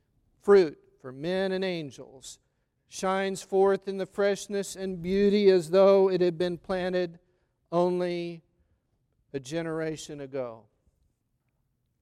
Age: 50-69